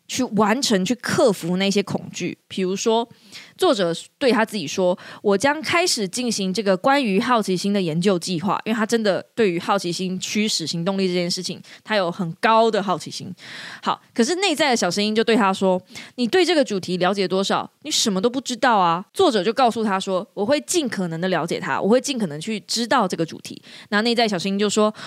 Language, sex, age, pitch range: Chinese, female, 20-39, 185-255 Hz